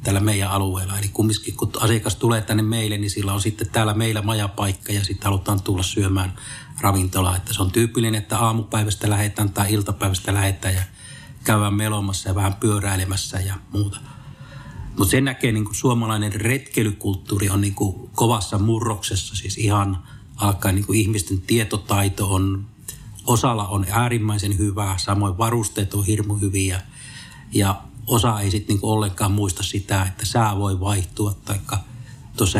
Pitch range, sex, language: 100-115 Hz, male, Finnish